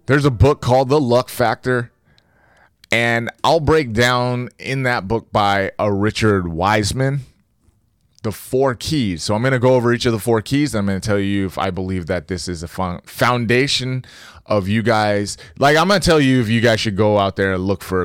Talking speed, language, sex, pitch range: 215 wpm, English, male, 95-130 Hz